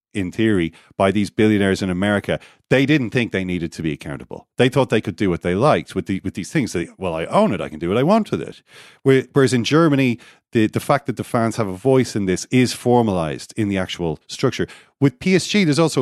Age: 40-59